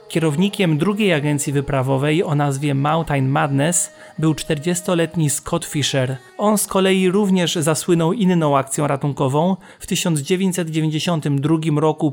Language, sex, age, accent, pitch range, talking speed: Polish, male, 30-49, native, 145-175 Hz, 115 wpm